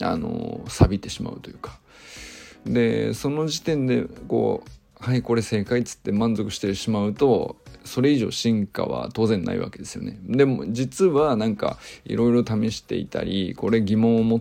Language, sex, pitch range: Japanese, male, 110-130 Hz